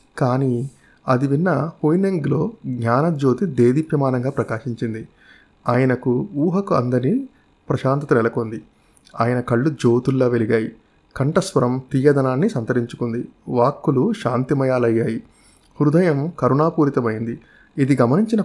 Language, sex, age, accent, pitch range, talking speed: Telugu, male, 30-49, native, 120-155 Hz, 80 wpm